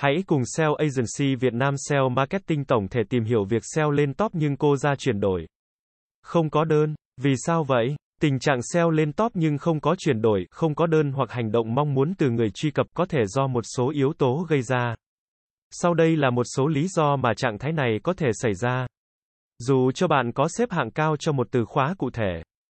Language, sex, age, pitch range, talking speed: Vietnamese, male, 20-39, 120-160 Hz, 225 wpm